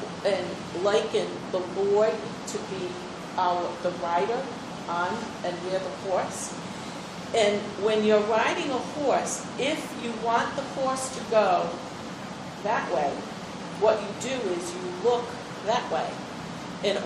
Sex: female